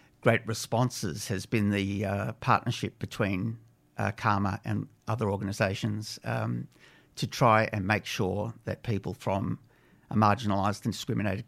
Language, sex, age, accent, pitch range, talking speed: English, male, 50-69, Australian, 100-115 Hz, 130 wpm